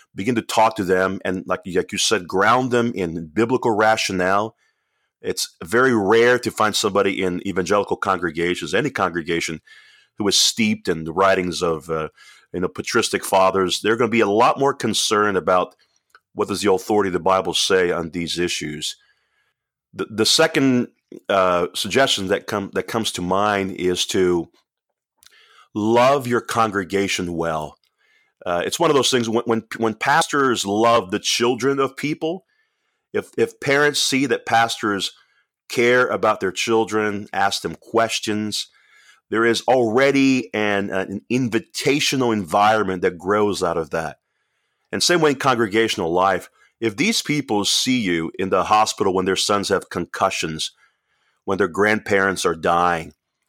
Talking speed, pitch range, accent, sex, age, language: 155 wpm, 95-135 Hz, American, male, 30-49, English